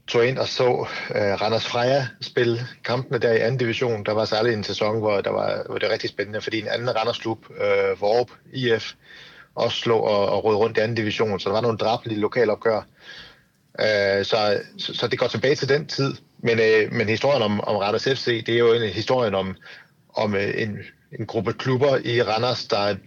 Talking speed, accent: 215 wpm, native